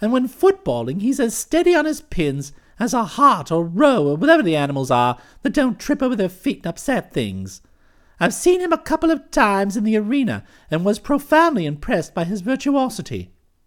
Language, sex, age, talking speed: English, male, 50-69, 200 wpm